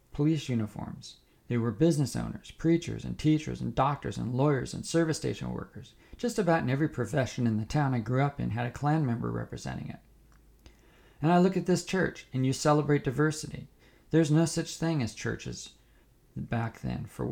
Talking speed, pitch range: 185 wpm, 115-150 Hz